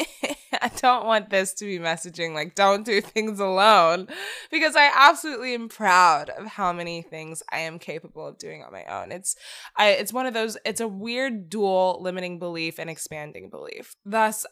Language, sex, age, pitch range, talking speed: English, female, 10-29, 175-220 Hz, 185 wpm